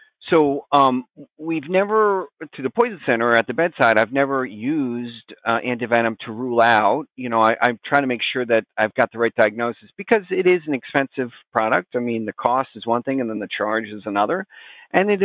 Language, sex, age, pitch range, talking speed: English, male, 40-59, 105-135 Hz, 215 wpm